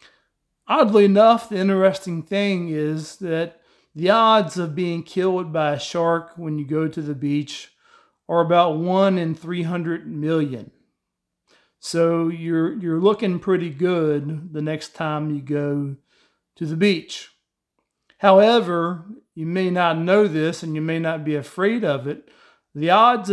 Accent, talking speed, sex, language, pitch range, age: American, 145 wpm, male, English, 160-195 Hz, 40-59